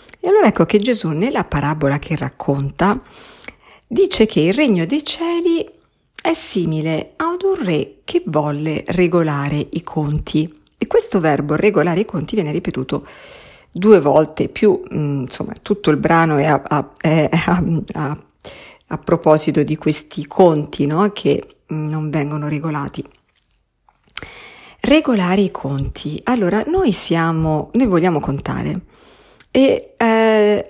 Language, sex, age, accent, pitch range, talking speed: Italian, female, 50-69, native, 150-200 Hz, 120 wpm